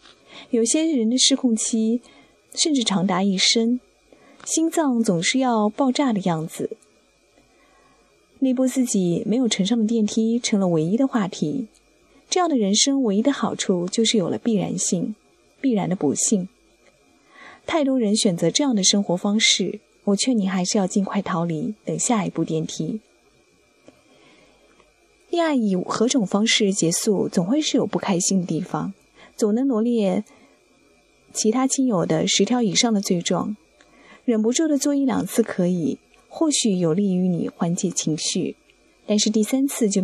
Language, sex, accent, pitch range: Chinese, female, native, 190-245 Hz